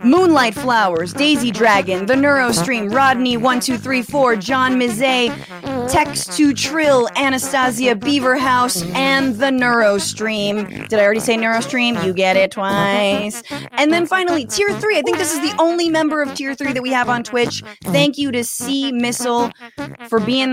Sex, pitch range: female, 205-275 Hz